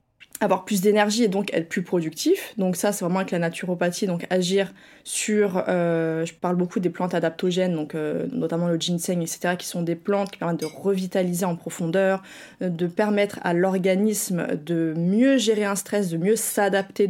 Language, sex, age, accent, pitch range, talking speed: French, female, 20-39, French, 170-210 Hz, 185 wpm